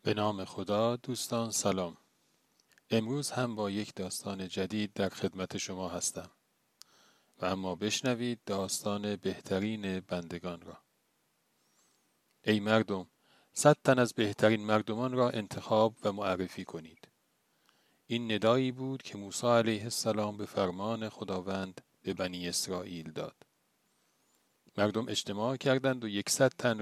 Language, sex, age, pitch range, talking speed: Persian, male, 40-59, 95-120 Hz, 120 wpm